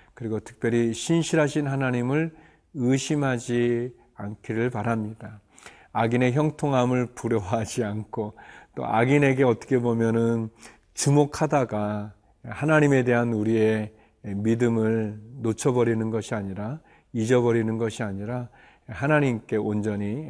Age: 40-59